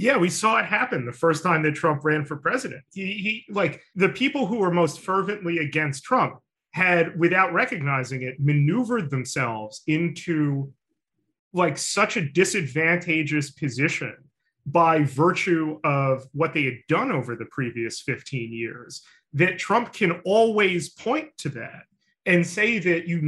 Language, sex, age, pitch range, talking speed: English, male, 30-49, 130-175 Hz, 150 wpm